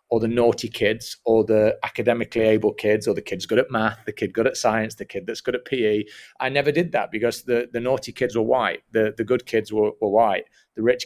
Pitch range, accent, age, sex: 110-125 Hz, British, 30-49, male